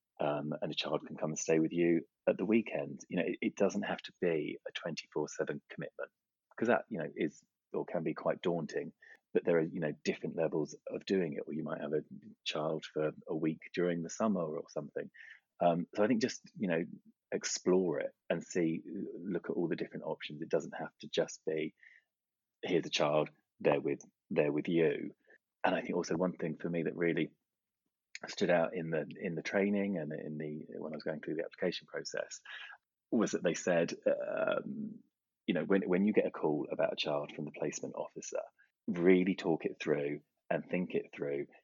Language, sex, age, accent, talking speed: English, male, 30-49, British, 210 wpm